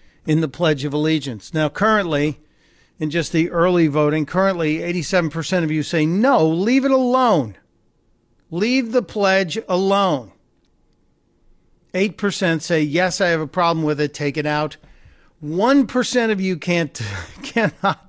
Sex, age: male, 50-69